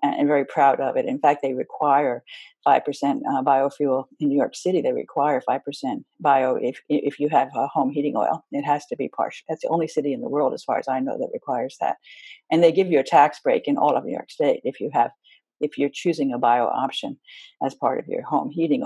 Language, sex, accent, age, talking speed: English, female, American, 60-79, 250 wpm